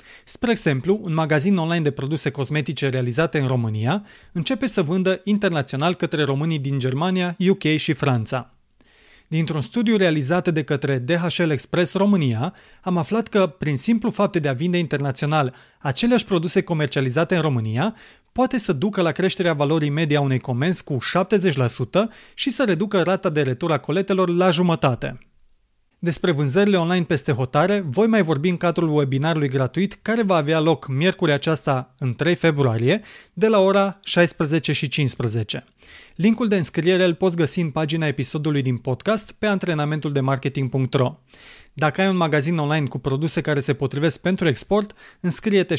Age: 30-49